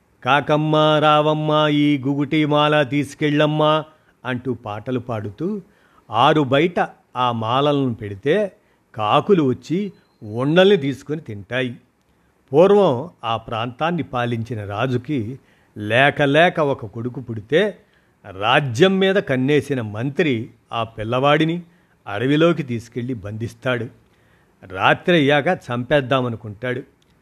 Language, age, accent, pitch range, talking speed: Telugu, 50-69, native, 120-155 Hz, 85 wpm